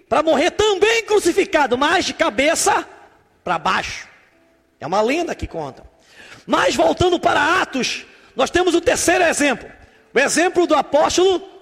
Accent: Brazilian